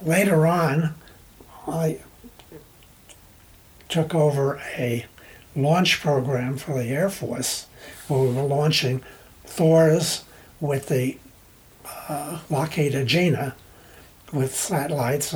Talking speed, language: 95 wpm, English